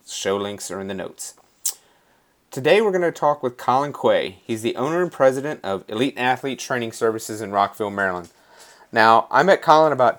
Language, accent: English, American